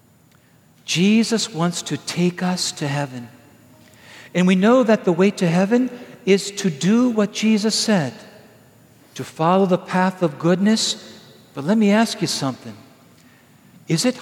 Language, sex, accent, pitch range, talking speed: English, male, American, 160-210 Hz, 150 wpm